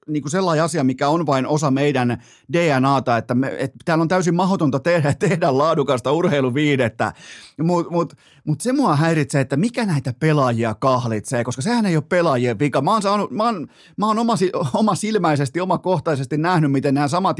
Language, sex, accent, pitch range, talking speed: Finnish, male, native, 140-180 Hz, 160 wpm